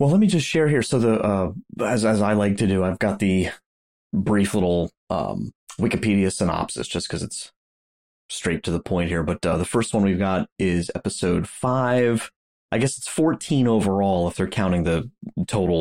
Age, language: 30-49, English